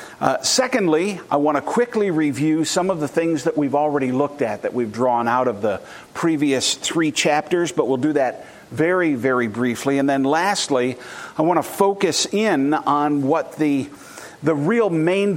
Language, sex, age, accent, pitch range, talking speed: English, male, 50-69, American, 140-185 Hz, 180 wpm